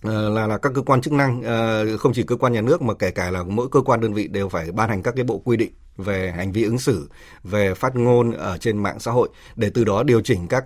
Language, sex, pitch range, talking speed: Vietnamese, male, 105-135 Hz, 280 wpm